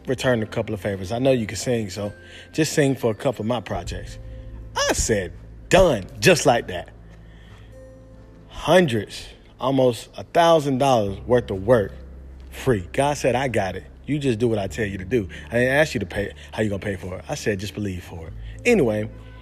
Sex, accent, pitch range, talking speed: male, American, 100-135 Hz, 205 wpm